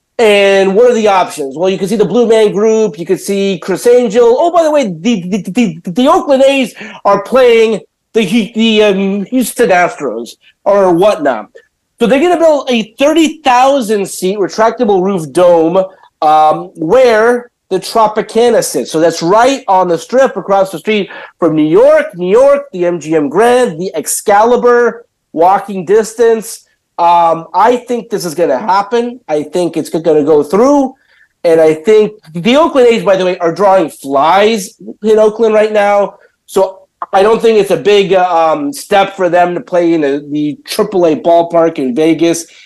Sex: male